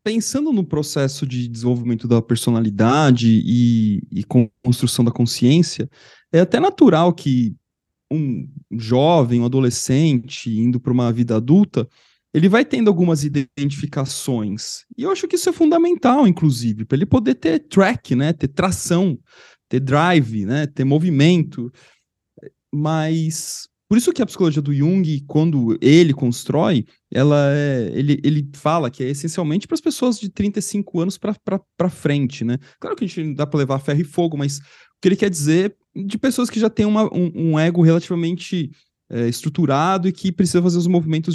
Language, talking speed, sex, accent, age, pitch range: Portuguese, 165 wpm, male, Brazilian, 20-39, 135-190 Hz